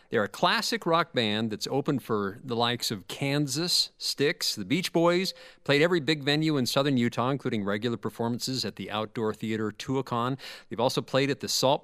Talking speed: 190 wpm